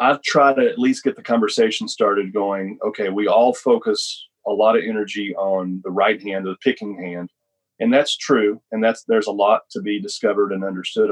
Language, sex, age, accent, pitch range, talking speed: English, male, 40-59, American, 100-125 Hz, 210 wpm